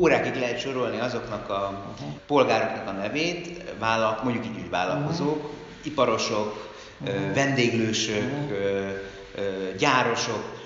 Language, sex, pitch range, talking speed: Hungarian, male, 105-130 Hz, 80 wpm